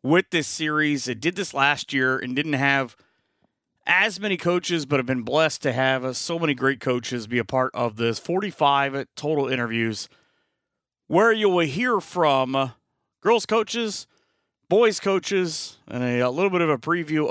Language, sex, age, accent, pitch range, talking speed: English, male, 30-49, American, 135-185 Hz, 175 wpm